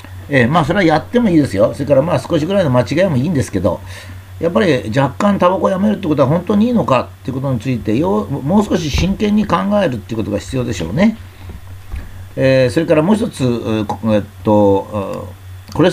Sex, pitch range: male, 100-155 Hz